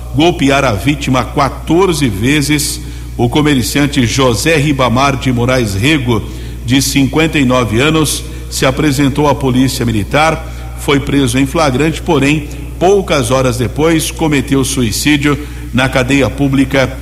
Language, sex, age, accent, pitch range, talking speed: Portuguese, male, 60-79, Brazilian, 120-140 Hz, 115 wpm